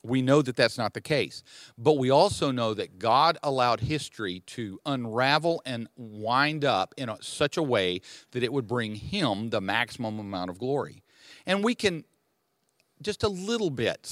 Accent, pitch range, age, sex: American, 115-150 Hz, 50-69, male